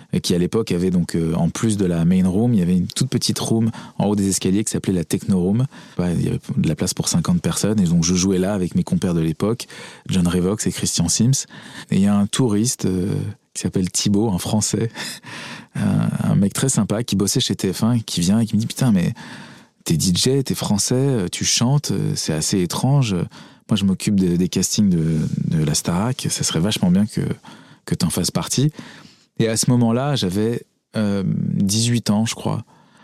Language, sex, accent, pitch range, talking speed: French, male, French, 95-125 Hz, 220 wpm